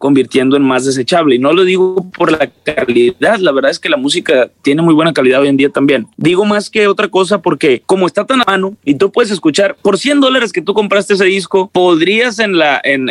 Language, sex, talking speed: Spanish, male, 240 wpm